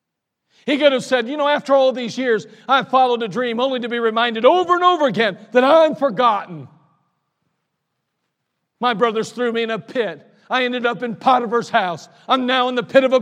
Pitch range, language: 150-240 Hz, English